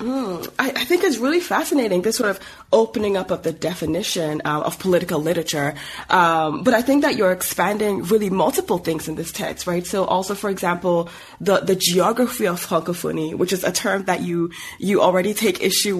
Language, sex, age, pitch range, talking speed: English, female, 20-39, 165-215 Hz, 195 wpm